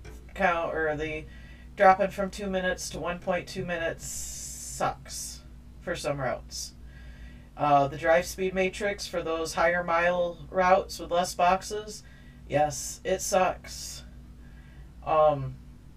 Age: 40-59